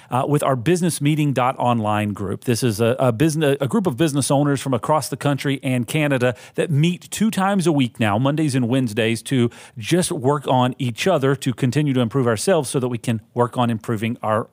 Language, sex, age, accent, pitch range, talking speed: English, male, 40-59, American, 120-150 Hz, 200 wpm